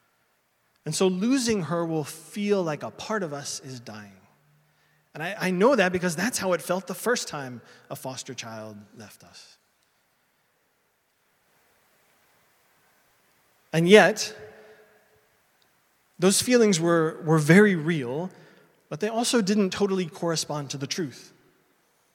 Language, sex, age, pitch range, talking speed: English, male, 20-39, 155-200 Hz, 130 wpm